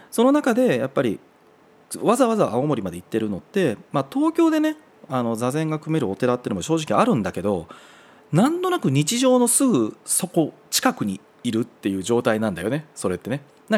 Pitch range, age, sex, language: 100-155 Hz, 40-59, male, Japanese